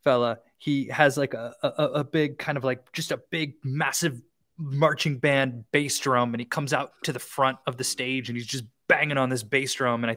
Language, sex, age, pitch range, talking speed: English, male, 20-39, 125-155 Hz, 230 wpm